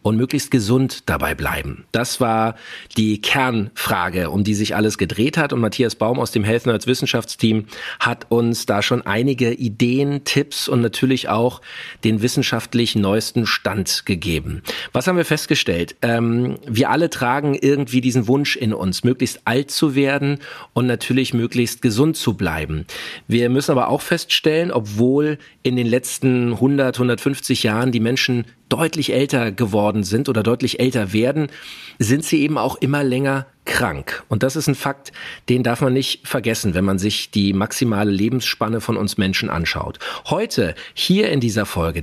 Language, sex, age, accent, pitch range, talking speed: German, male, 40-59, German, 110-140 Hz, 165 wpm